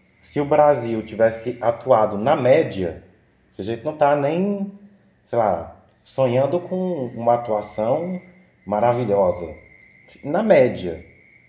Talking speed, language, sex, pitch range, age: 115 wpm, Portuguese, male, 100-140 Hz, 20-39